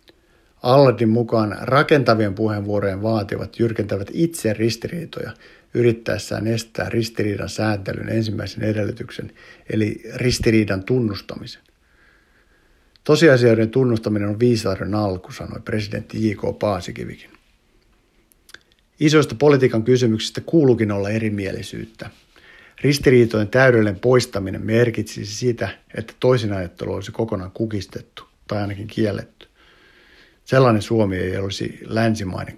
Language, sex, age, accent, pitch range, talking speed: Finnish, male, 50-69, native, 105-120 Hz, 95 wpm